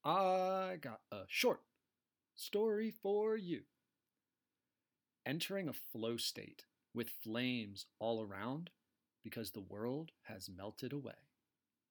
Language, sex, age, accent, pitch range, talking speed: English, male, 30-49, American, 115-170 Hz, 105 wpm